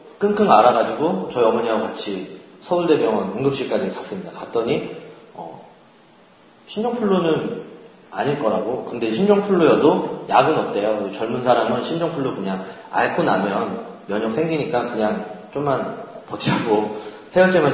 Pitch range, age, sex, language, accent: 125-195 Hz, 40-59, male, Korean, native